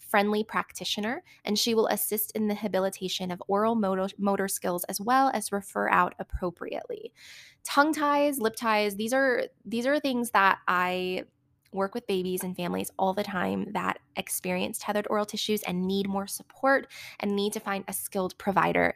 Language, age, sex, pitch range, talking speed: English, 20-39, female, 190-230 Hz, 170 wpm